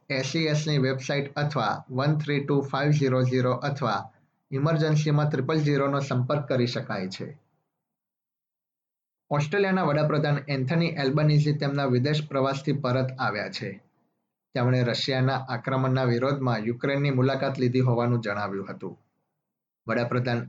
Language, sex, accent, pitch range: Gujarati, male, native, 125-145 Hz